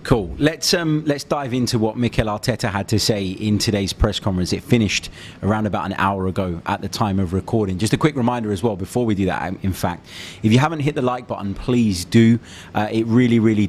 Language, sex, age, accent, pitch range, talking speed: English, male, 20-39, British, 95-115 Hz, 230 wpm